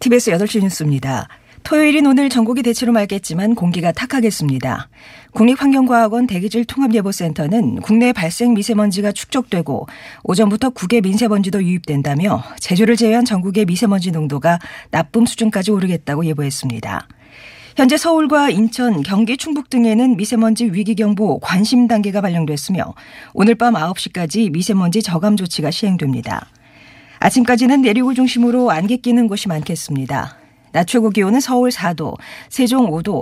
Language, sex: Korean, female